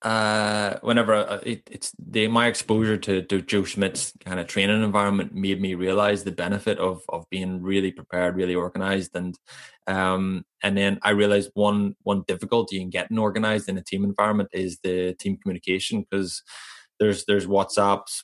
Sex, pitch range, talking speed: male, 95-105 Hz, 170 wpm